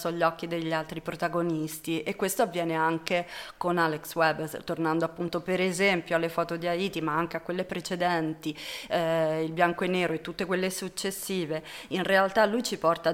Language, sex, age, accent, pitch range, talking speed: Italian, female, 30-49, native, 165-185 Hz, 180 wpm